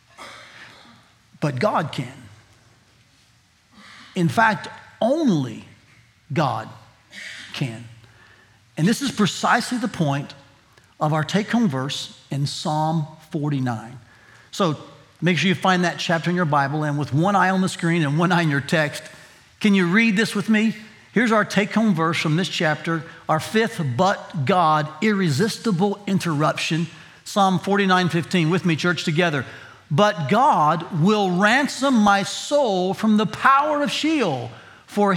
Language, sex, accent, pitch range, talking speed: English, male, American, 155-215 Hz, 140 wpm